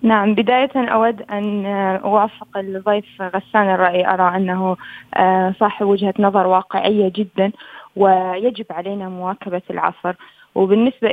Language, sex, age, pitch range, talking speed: Arabic, female, 20-39, 190-220 Hz, 110 wpm